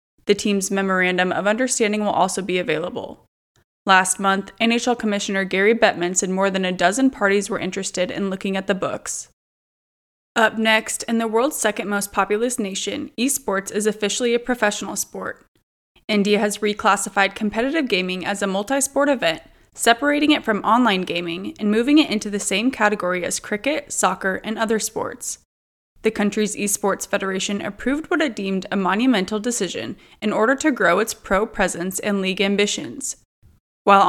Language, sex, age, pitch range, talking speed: English, female, 20-39, 190-225 Hz, 160 wpm